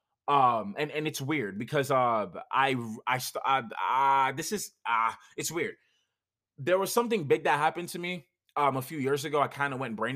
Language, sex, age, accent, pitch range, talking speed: English, male, 20-39, American, 120-155 Hz, 205 wpm